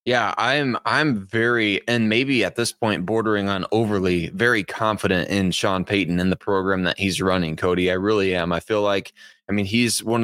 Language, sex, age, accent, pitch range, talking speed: English, male, 20-39, American, 100-115 Hz, 200 wpm